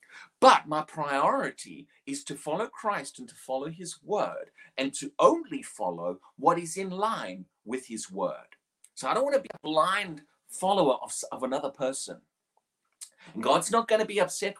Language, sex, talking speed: English, male, 175 wpm